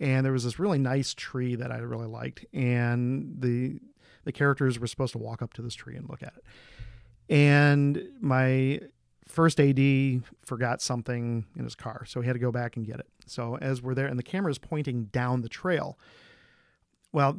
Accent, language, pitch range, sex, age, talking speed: American, English, 125-155 Hz, male, 40-59, 195 wpm